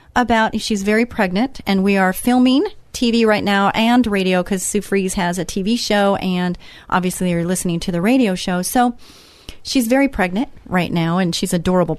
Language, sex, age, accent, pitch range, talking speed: English, female, 30-49, American, 185-230 Hz, 185 wpm